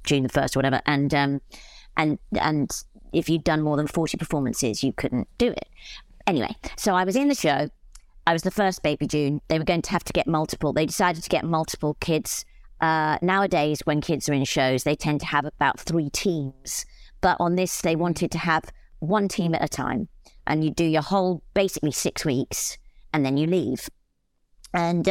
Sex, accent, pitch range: female, British, 145-180 Hz